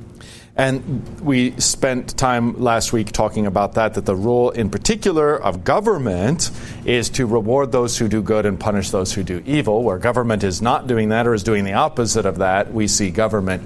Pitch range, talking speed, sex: 100-120 Hz, 200 wpm, male